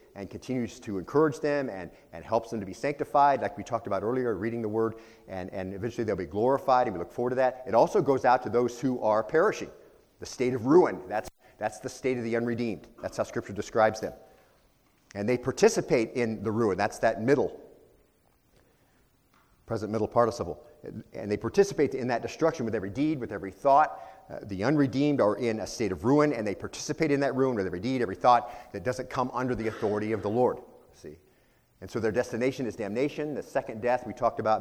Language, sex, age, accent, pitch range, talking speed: English, male, 40-59, American, 110-135 Hz, 215 wpm